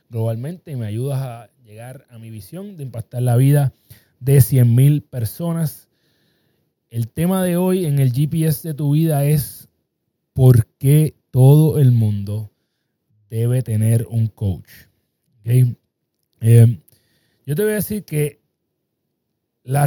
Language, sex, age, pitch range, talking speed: Spanish, male, 30-49, 115-155 Hz, 135 wpm